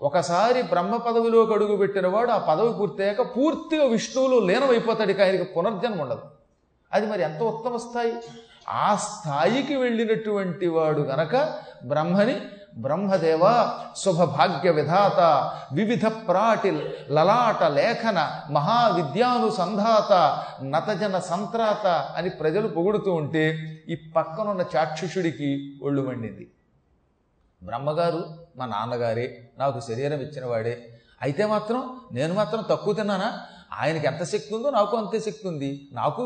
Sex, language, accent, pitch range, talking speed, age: male, Telugu, native, 155-230 Hz, 110 wpm, 40-59